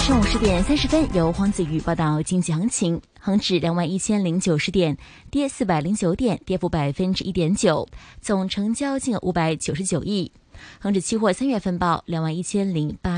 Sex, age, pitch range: female, 20-39, 170-220 Hz